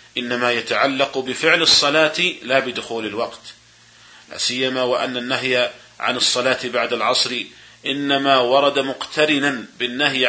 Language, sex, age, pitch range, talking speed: Arabic, male, 40-59, 125-150 Hz, 105 wpm